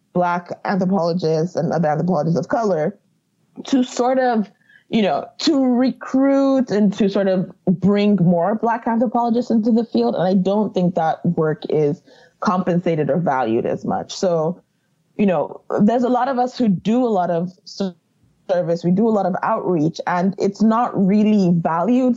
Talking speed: 170 wpm